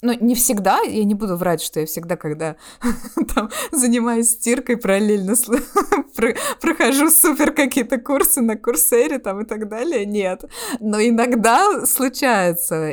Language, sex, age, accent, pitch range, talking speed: Russian, female, 20-39, native, 170-240 Hz, 140 wpm